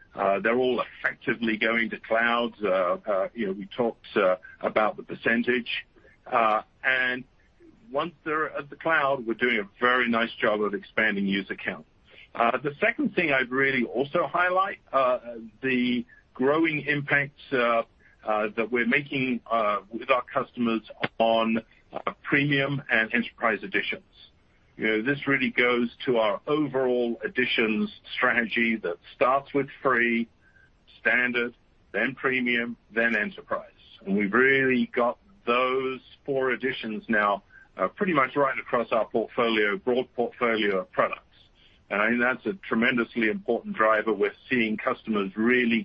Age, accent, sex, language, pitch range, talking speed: 50-69, British, male, English, 115-130 Hz, 145 wpm